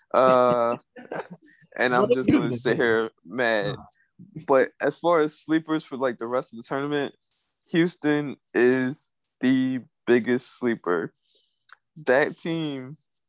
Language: English